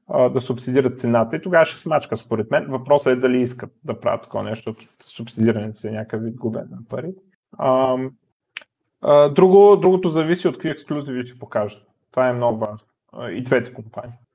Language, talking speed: Bulgarian, 170 wpm